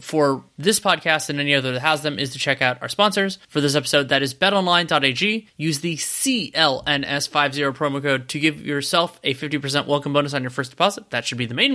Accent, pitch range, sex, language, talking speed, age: American, 140-170 Hz, male, English, 215 wpm, 20-39